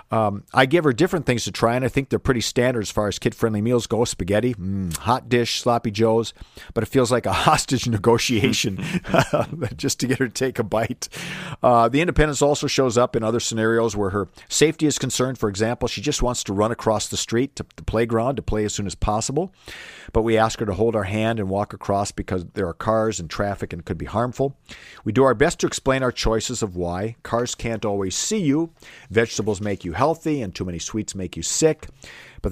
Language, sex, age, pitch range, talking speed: English, male, 50-69, 105-125 Hz, 230 wpm